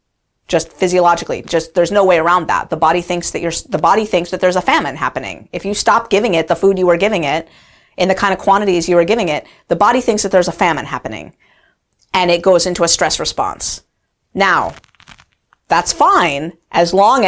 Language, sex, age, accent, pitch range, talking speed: English, female, 30-49, American, 165-200 Hz, 210 wpm